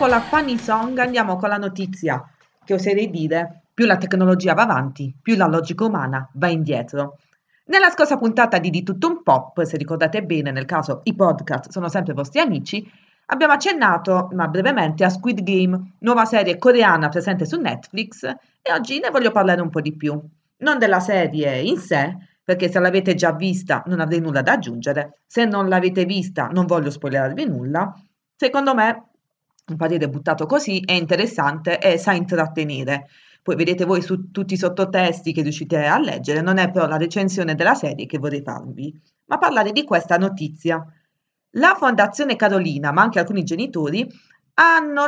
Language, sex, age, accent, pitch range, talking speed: Italian, female, 30-49, native, 160-220 Hz, 175 wpm